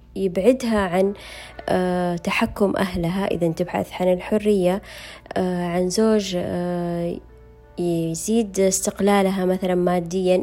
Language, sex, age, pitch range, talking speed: Arabic, female, 20-39, 180-240 Hz, 80 wpm